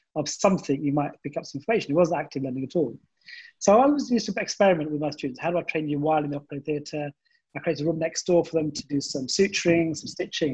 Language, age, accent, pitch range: English, 30-49, British, 150-190 Hz